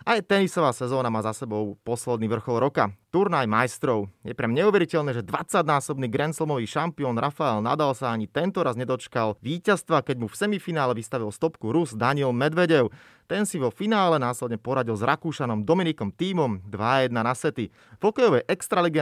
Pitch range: 115-165 Hz